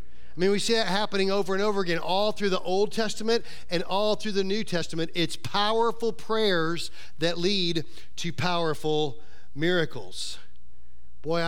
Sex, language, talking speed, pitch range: male, English, 155 wpm, 130-165 Hz